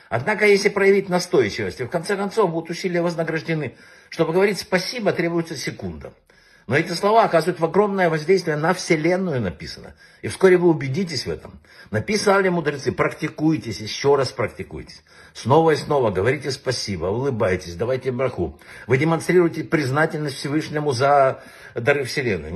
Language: Russian